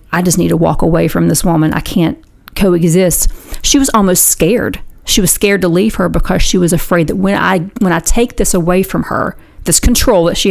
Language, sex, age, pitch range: English, female, 40-59, 175-215 Hz